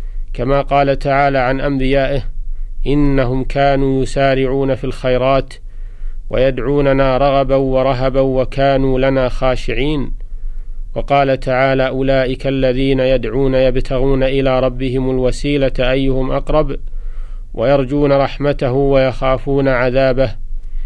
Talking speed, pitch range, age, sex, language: 90 wpm, 125-140 Hz, 40-59, male, Arabic